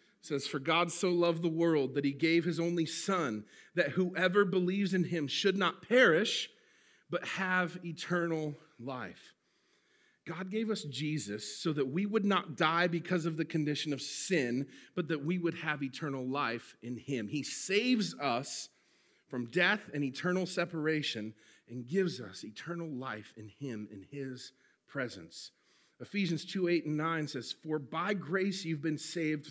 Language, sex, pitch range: English, male, 150-200 Hz